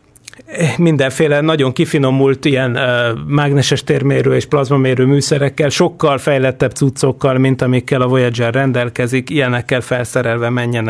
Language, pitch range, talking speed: Hungarian, 115-140 Hz, 110 wpm